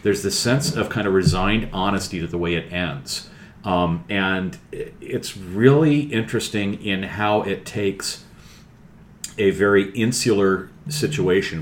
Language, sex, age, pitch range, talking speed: English, male, 40-59, 80-95 Hz, 135 wpm